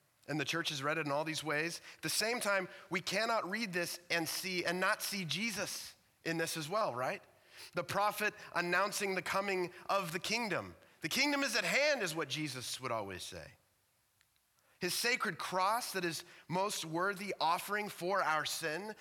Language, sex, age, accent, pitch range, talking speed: English, male, 30-49, American, 130-190 Hz, 185 wpm